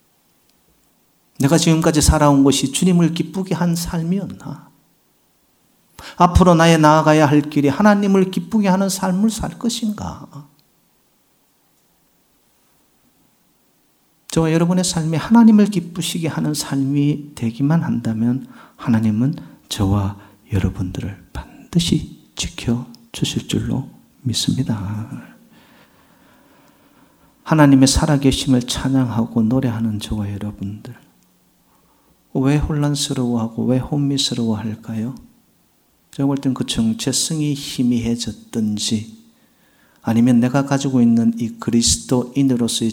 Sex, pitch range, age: male, 115-150 Hz, 40-59